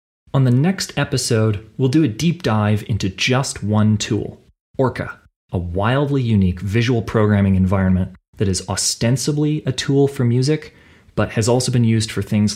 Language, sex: English, male